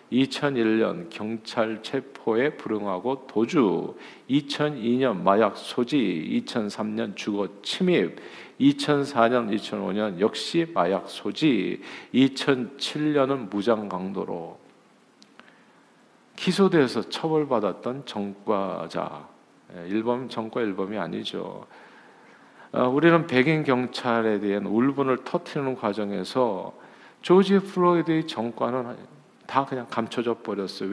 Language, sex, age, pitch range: Korean, male, 50-69, 105-145 Hz